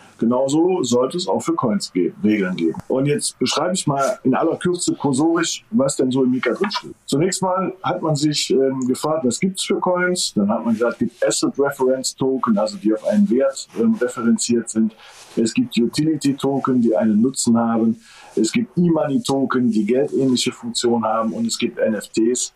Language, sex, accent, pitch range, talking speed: German, male, German, 115-180 Hz, 195 wpm